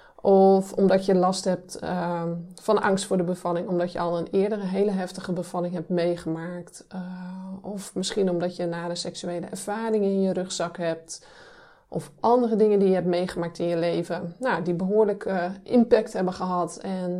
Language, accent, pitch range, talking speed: Dutch, Dutch, 175-205 Hz, 170 wpm